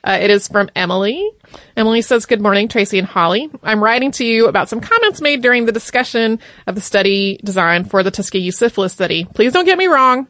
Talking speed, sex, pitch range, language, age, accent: 215 wpm, female, 195-245 Hz, English, 30-49, American